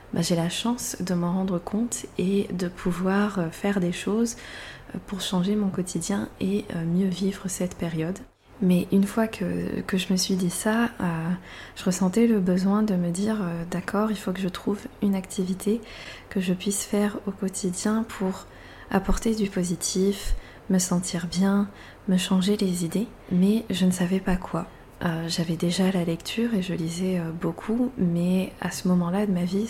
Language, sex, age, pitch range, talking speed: French, female, 20-39, 175-205 Hz, 180 wpm